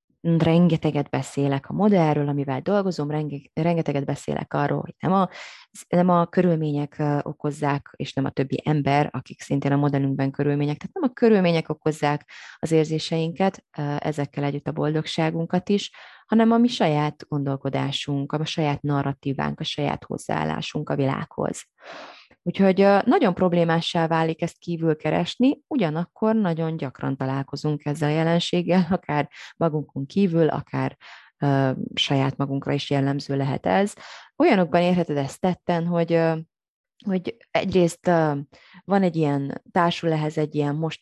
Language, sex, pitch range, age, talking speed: Hungarian, female, 140-170 Hz, 20-39, 130 wpm